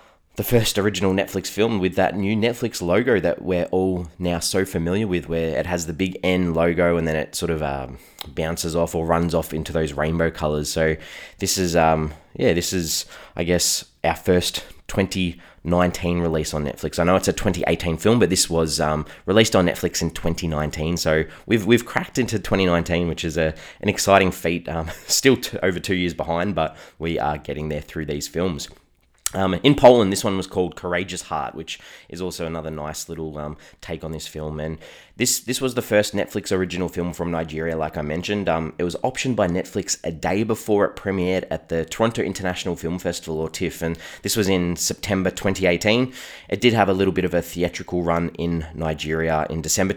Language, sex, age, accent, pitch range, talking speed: English, male, 20-39, Australian, 80-95 Hz, 205 wpm